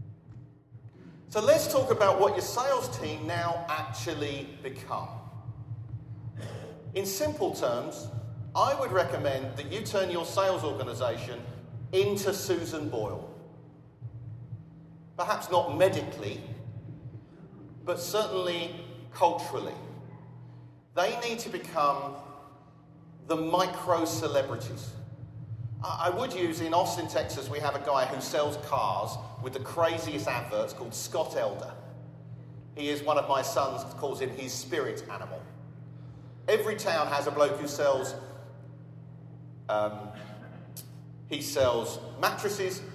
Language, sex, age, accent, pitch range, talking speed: English, male, 40-59, British, 120-165 Hz, 110 wpm